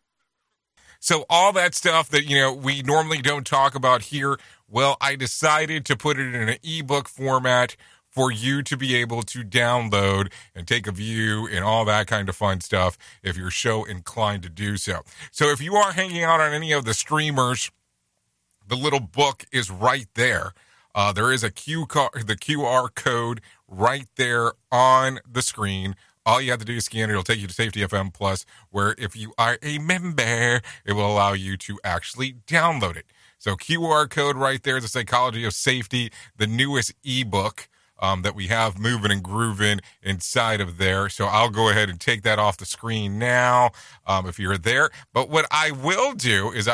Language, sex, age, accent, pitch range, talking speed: English, male, 40-59, American, 105-135 Hz, 195 wpm